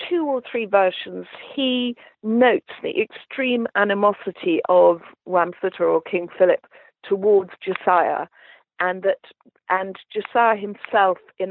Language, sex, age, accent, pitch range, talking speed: English, female, 50-69, British, 175-250 Hz, 110 wpm